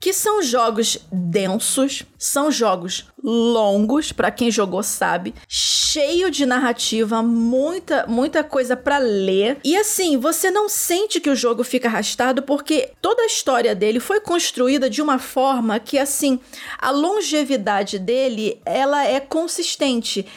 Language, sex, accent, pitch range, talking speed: Portuguese, female, Brazilian, 205-285 Hz, 140 wpm